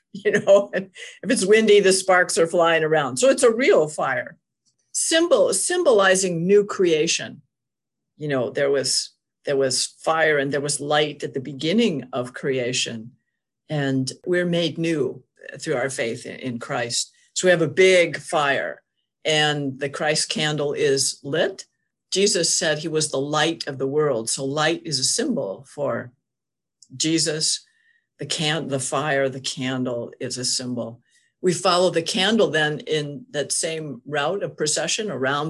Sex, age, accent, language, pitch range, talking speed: female, 50-69, American, English, 135-175 Hz, 155 wpm